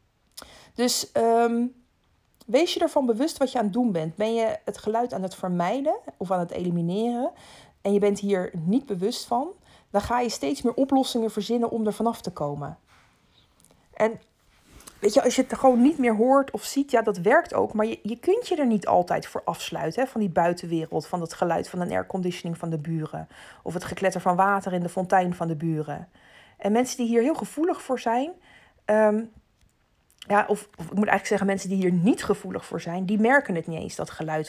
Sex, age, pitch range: female, 40-59, 180-250 Hz